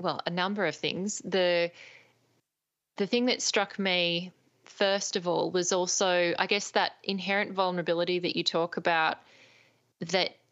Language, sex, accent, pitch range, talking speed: English, female, Australian, 170-200 Hz, 150 wpm